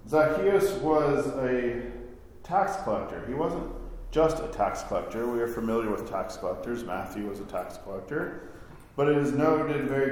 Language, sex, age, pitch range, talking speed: English, male, 40-59, 110-145 Hz, 160 wpm